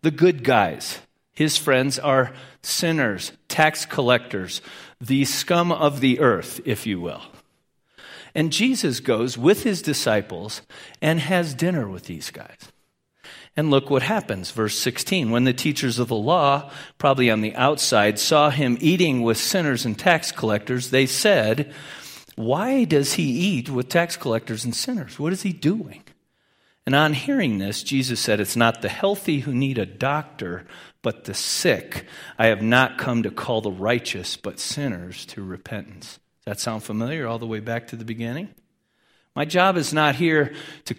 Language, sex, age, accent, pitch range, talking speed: English, male, 50-69, American, 115-155 Hz, 165 wpm